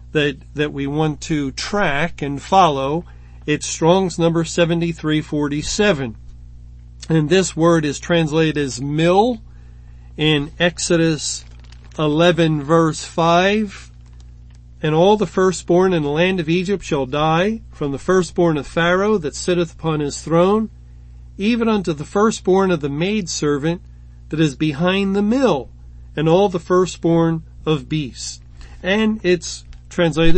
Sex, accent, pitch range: male, American, 135-180 Hz